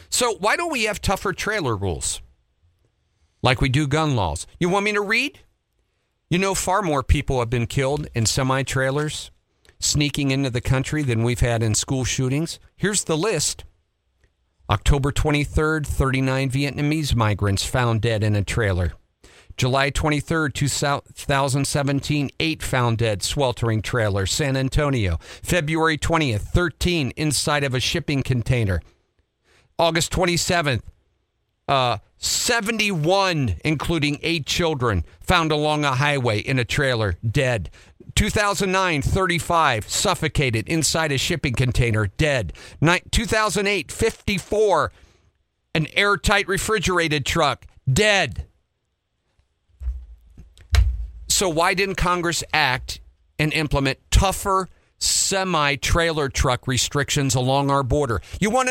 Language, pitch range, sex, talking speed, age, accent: English, 105-165 Hz, male, 120 wpm, 50-69, American